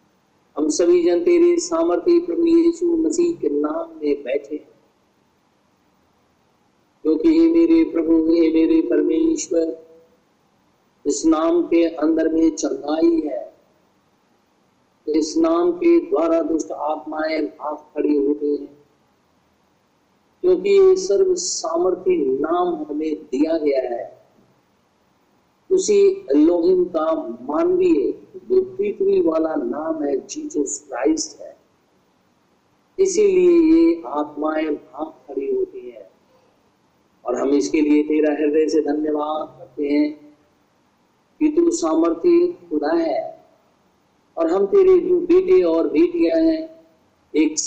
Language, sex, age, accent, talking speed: Hindi, male, 50-69, native, 80 wpm